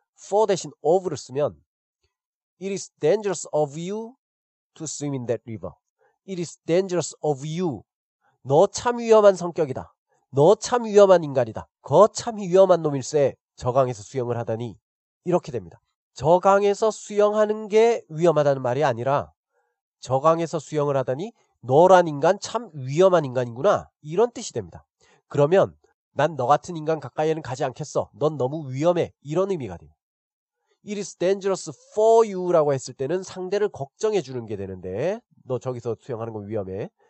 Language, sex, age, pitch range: Korean, male, 40-59, 130-195 Hz